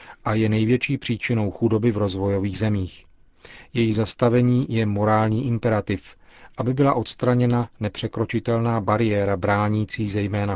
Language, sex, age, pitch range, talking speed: Czech, male, 40-59, 105-120 Hz, 115 wpm